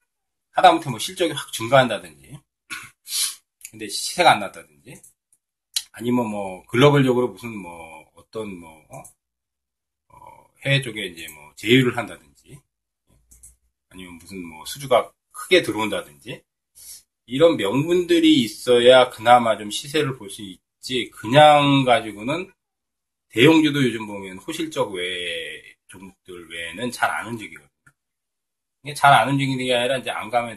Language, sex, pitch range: Korean, male, 100-145 Hz